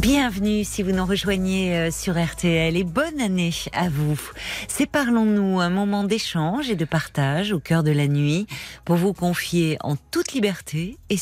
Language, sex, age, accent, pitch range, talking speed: French, female, 40-59, French, 150-185 Hz, 170 wpm